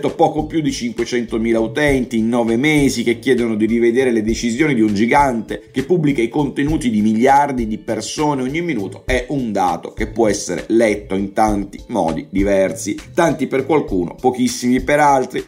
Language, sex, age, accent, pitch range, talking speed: Italian, male, 50-69, native, 110-140 Hz, 170 wpm